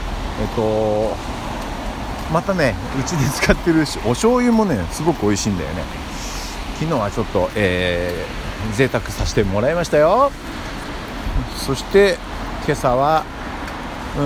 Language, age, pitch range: Japanese, 60-79, 85-120 Hz